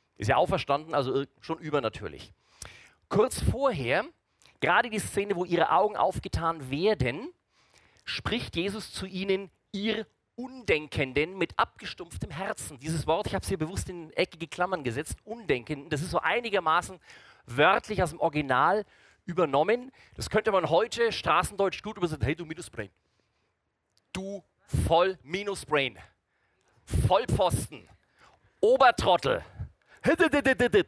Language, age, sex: German, 40-59, male